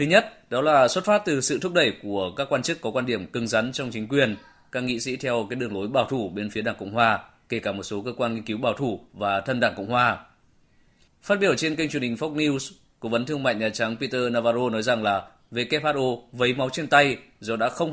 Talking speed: 265 wpm